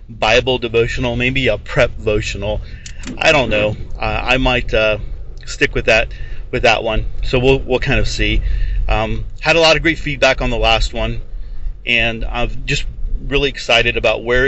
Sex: male